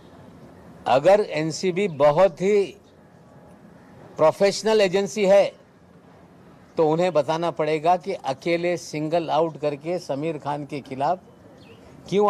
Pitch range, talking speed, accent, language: 145-190 Hz, 100 wpm, native, Marathi